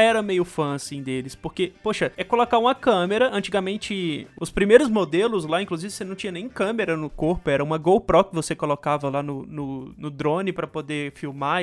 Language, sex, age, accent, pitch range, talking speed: Portuguese, male, 20-39, Brazilian, 175-230 Hz, 195 wpm